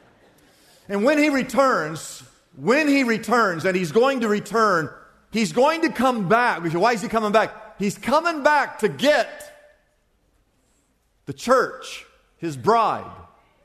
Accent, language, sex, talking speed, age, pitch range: American, English, male, 135 wpm, 50-69, 210-290 Hz